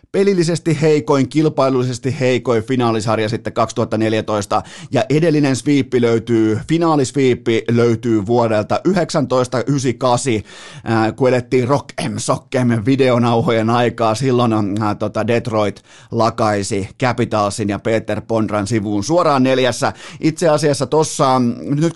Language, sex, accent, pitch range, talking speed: Finnish, male, native, 115-140 Hz, 95 wpm